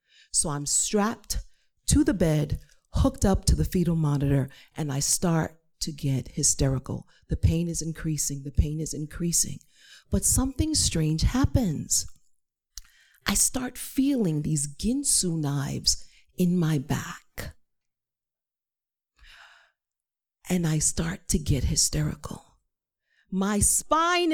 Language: English